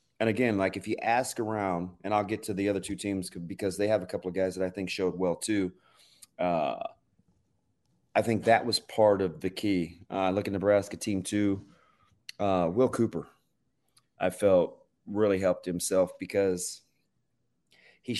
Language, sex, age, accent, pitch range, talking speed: English, male, 30-49, American, 95-105 Hz, 175 wpm